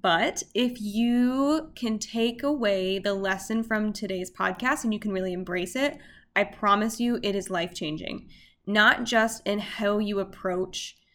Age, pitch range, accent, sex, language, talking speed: 10-29, 195-230 Hz, American, female, English, 155 wpm